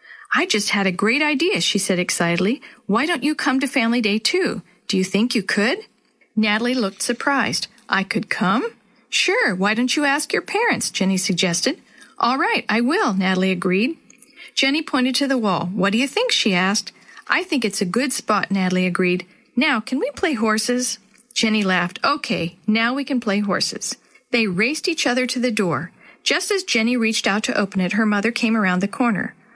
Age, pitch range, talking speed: 50-69, 200-265 Hz, 195 wpm